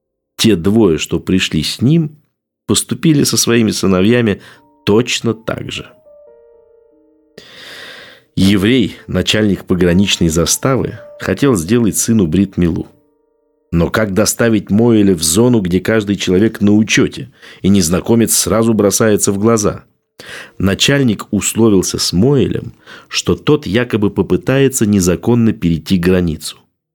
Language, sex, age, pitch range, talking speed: Russian, male, 50-69, 90-120 Hz, 110 wpm